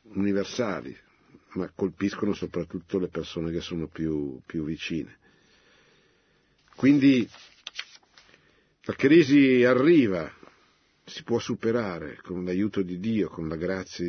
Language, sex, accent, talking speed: Italian, male, native, 105 wpm